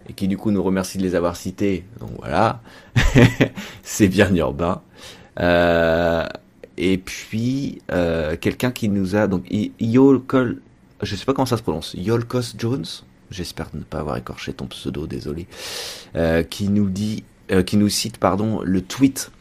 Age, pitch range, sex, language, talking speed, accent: 30-49, 85-105 Hz, male, French, 165 wpm, French